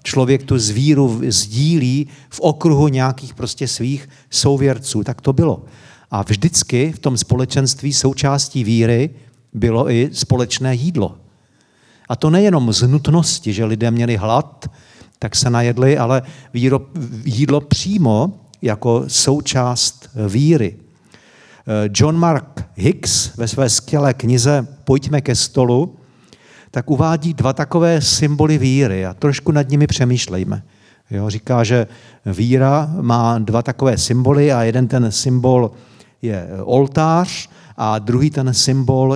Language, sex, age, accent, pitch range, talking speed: Czech, male, 50-69, native, 115-140 Hz, 125 wpm